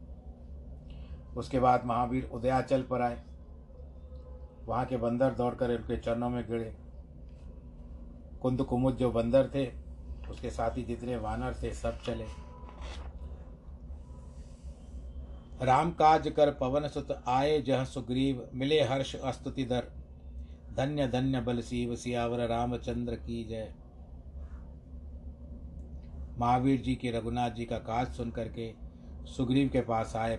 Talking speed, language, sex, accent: 115 wpm, Hindi, male, native